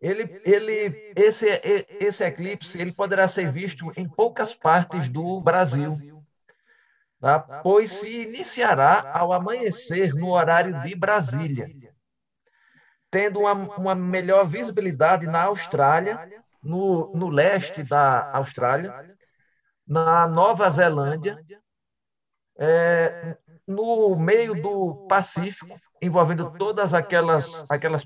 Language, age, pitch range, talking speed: Portuguese, 50-69, 150-195 Hz, 90 wpm